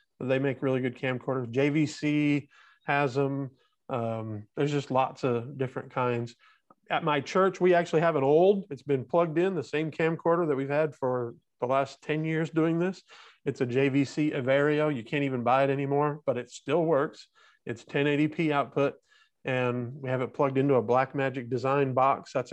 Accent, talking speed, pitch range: American, 180 wpm, 130-165 Hz